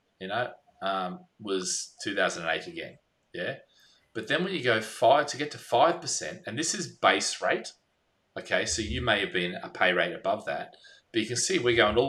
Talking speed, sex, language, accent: 195 wpm, male, English, Australian